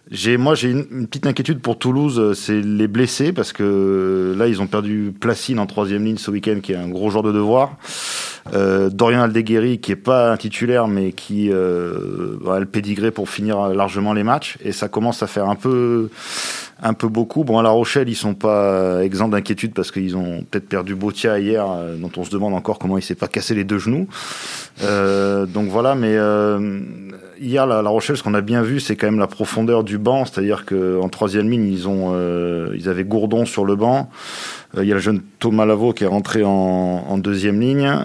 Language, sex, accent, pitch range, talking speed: French, male, French, 95-115 Hz, 220 wpm